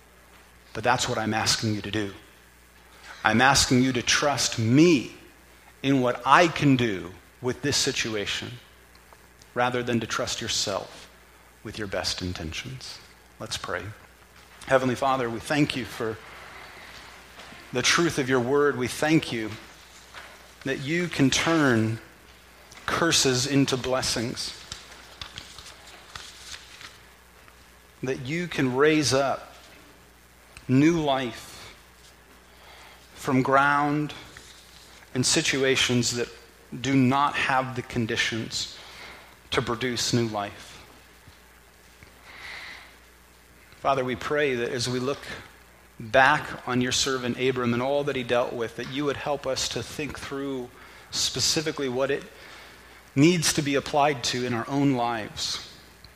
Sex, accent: male, American